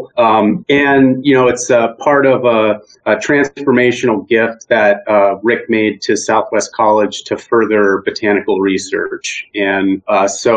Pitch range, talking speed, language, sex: 100-120 Hz, 150 wpm, English, male